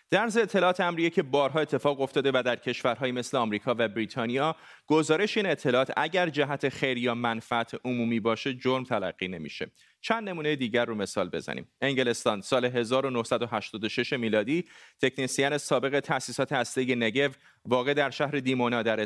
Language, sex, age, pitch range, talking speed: Persian, male, 30-49, 120-145 Hz, 150 wpm